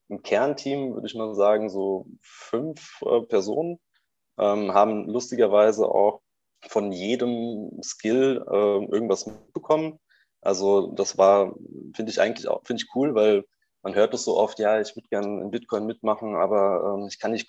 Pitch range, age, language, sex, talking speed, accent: 100-110 Hz, 20-39, German, male, 165 wpm, German